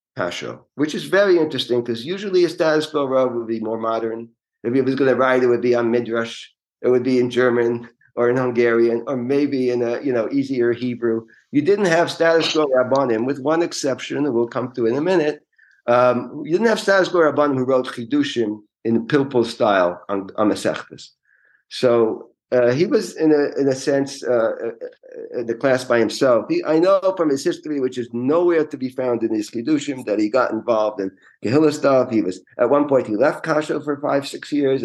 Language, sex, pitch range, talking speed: English, male, 120-165 Hz, 205 wpm